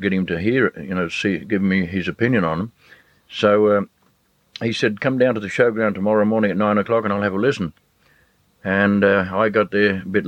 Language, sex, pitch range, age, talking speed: English, male, 95-115 Hz, 60-79, 235 wpm